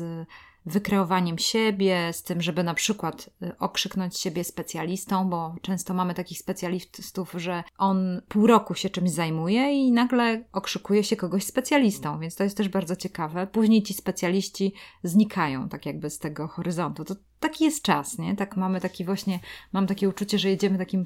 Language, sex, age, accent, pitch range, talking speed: Polish, female, 20-39, native, 175-205 Hz, 160 wpm